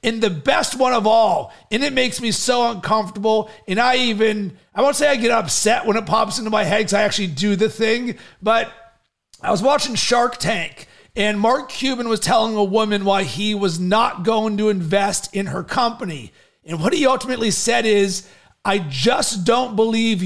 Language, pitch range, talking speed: English, 195-230 Hz, 195 wpm